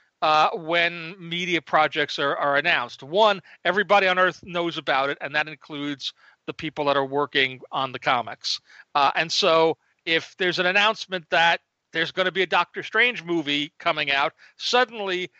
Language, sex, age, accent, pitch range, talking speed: English, male, 40-59, American, 160-205 Hz, 170 wpm